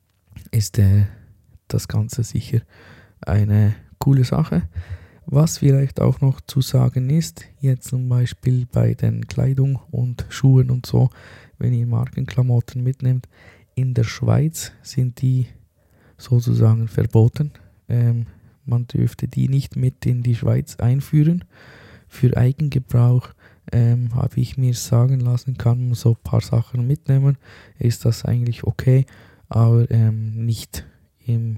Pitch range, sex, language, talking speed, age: 105-130 Hz, male, German, 130 wpm, 20-39